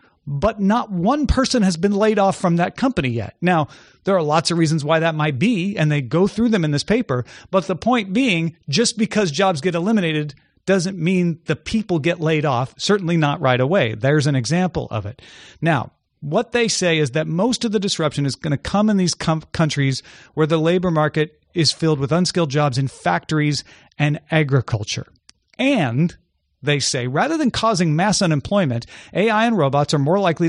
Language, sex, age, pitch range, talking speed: English, male, 40-59, 140-190 Hz, 195 wpm